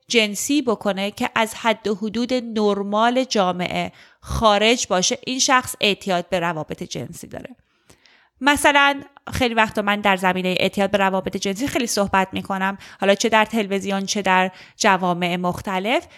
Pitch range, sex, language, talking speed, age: 195-255 Hz, female, Persian, 145 wpm, 30-49